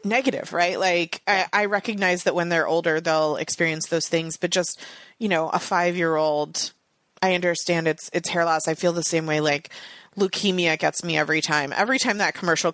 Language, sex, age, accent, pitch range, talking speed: English, female, 30-49, American, 155-190 Hz, 195 wpm